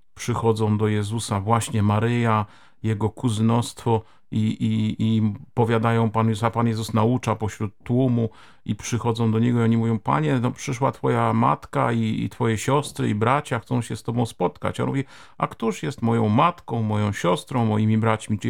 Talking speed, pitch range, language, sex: 175 wpm, 110-130 Hz, Polish, male